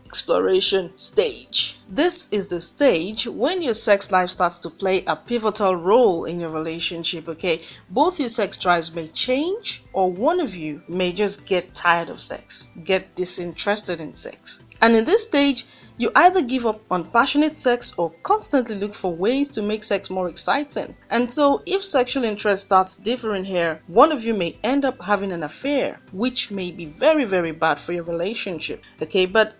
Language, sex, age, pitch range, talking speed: English, female, 30-49, 180-270 Hz, 180 wpm